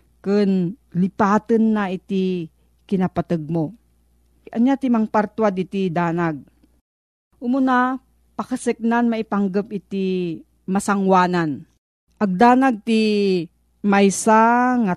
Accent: native